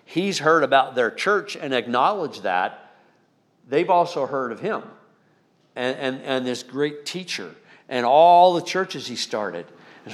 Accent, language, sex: American, English, male